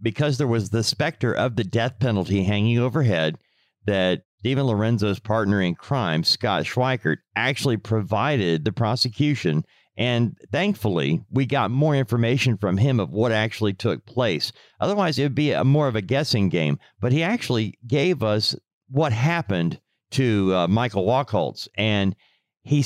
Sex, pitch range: male, 105-140 Hz